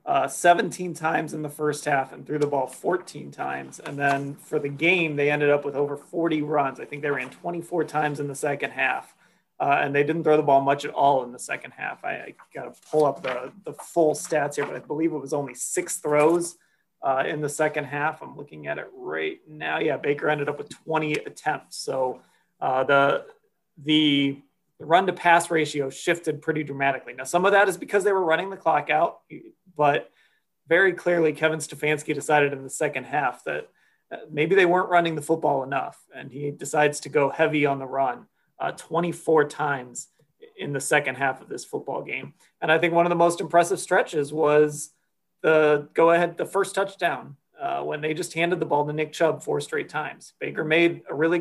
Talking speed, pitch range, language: 210 wpm, 145-170 Hz, English